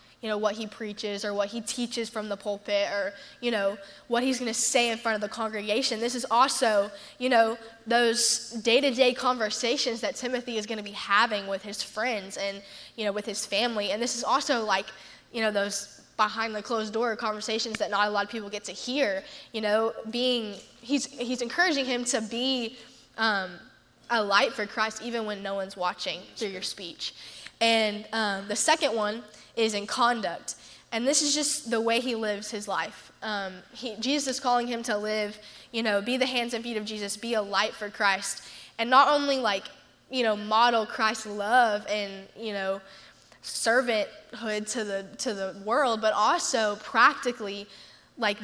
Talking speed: 190 wpm